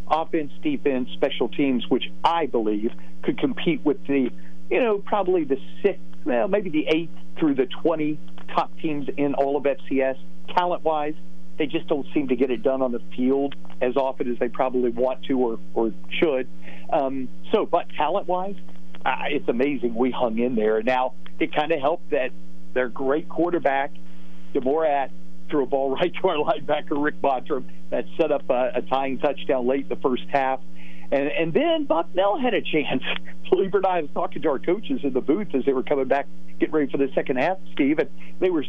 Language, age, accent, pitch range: English, 50-69, American, 120-160 Hz